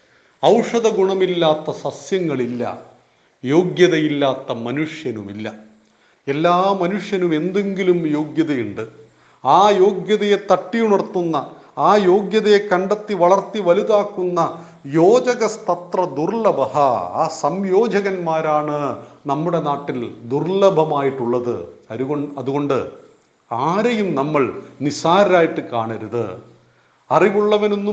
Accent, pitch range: native, 145-200 Hz